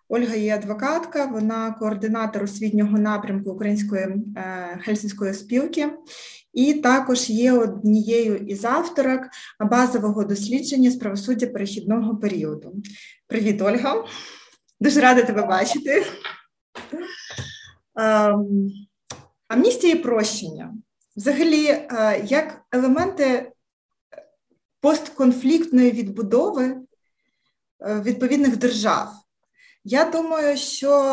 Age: 20-39